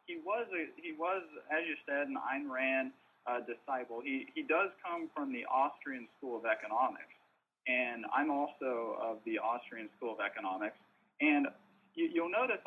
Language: English